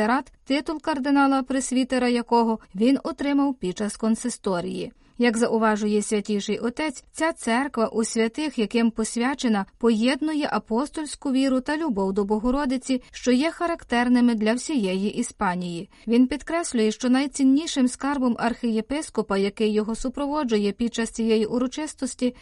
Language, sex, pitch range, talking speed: Ukrainian, female, 220-270 Hz, 120 wpm